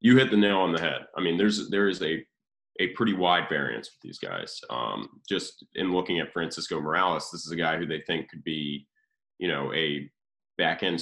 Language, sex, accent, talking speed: English, male, American, 225 wpm